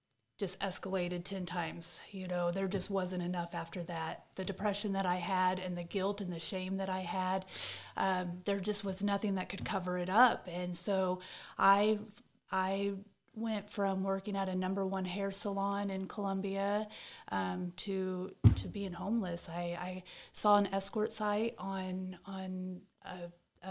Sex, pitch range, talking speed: female, 185-200 Hz, 165 wpm